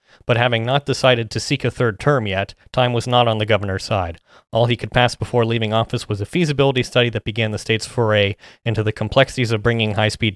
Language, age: English, 30-49